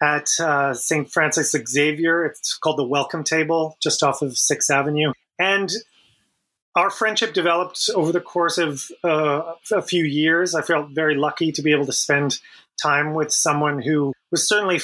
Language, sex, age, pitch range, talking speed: English, male, 30-49, 145-175 Hz, 170 wpm